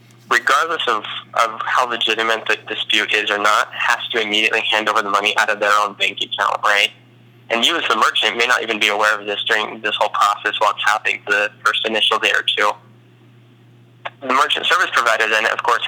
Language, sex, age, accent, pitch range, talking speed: English, male, 20-39, American, 105-120 Hz, 210 wpm